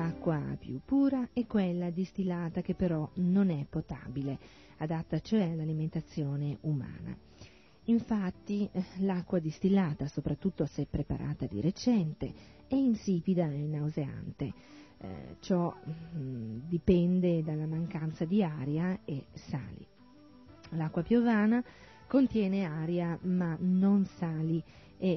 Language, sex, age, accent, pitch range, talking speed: Italian, female, 40-59, native, 155-195 Hz, 105 wpm